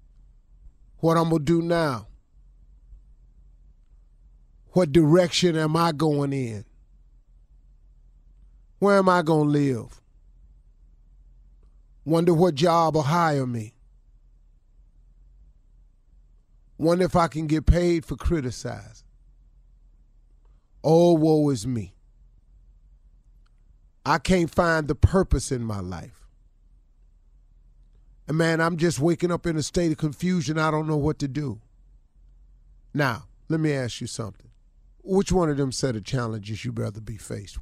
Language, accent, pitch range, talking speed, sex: English, American, 115-165 Hz, 125 wpm, male